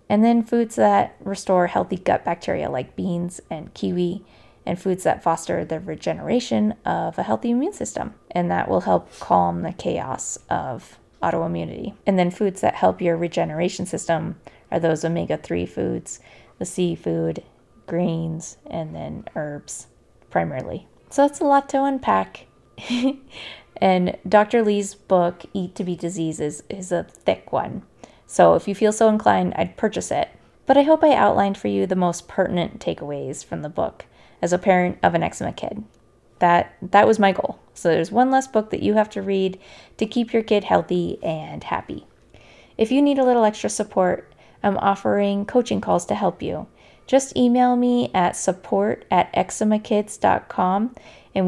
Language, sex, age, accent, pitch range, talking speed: English, female, 20-39, American, 170-225 Hz, 165 wpm